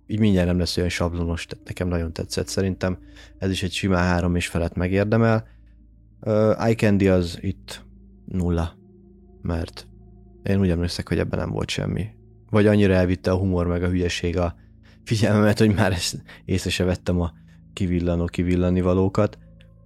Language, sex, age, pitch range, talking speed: Hungarian, male, 30-49, 90-105 Hz, 150 wpm